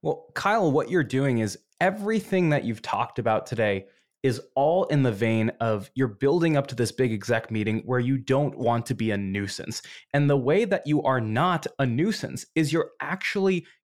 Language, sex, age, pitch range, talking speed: English, male, 20-39, 125-190 Hz, 200 wpm